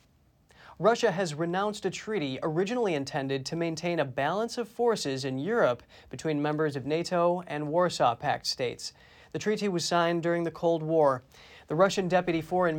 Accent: American